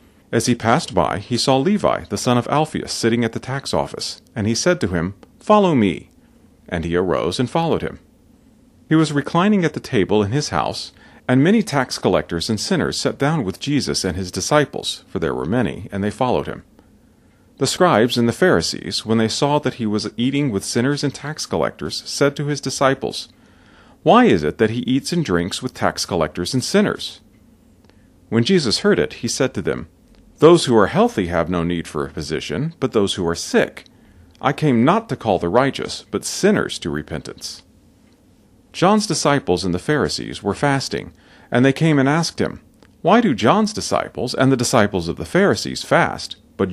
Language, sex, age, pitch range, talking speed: English, male, 40-59, 100-145 Hz, 195 wpm